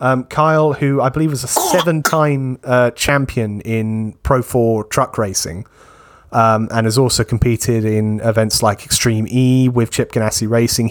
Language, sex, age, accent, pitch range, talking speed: English, male, 30-49, British, 110-130 Hz, 160 wpm